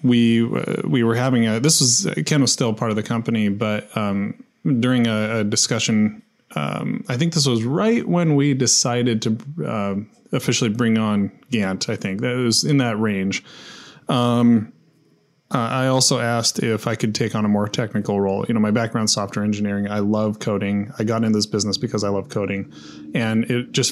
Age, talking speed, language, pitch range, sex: 20-39, 200 wpm, English, 105-125 Hz, male